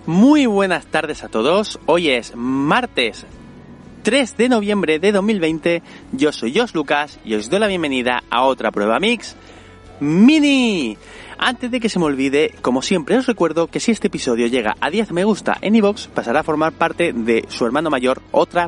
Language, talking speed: Spanish, 185 wpm